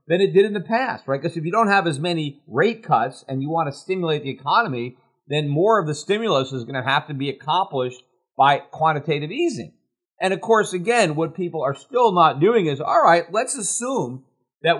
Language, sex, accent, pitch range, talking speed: English, male, American, 145-205 Hz, 220 wpm